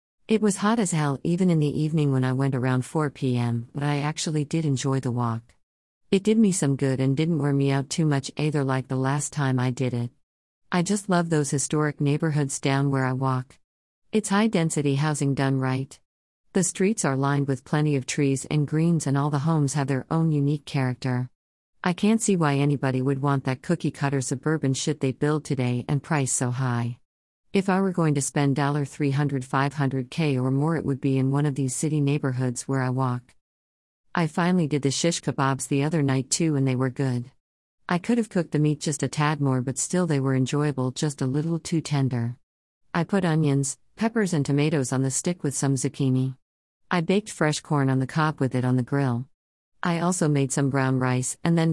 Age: 50-69